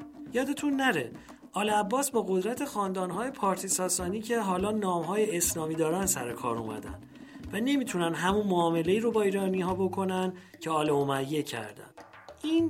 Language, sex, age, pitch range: English, male, 40-59, 170-230 Hz